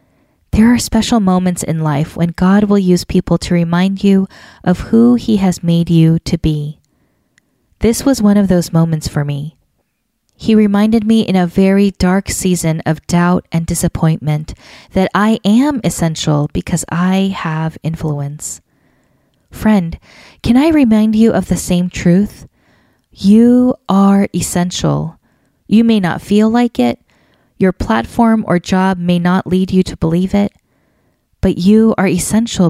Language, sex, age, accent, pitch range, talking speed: English, female, 20-39, American, 165-210 Hz, 150 wpm